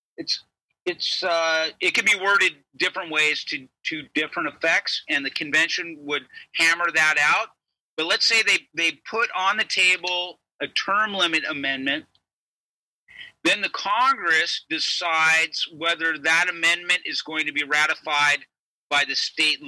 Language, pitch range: English, 150-180 Hz